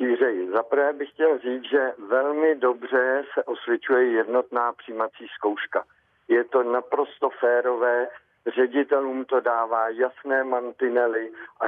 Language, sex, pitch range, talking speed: Czech, male, 120-150 Hz, 120 wpm